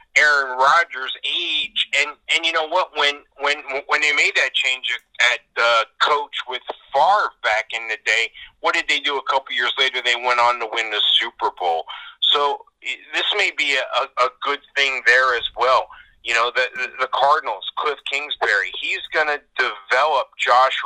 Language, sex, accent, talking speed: English, male, American, 180 wpm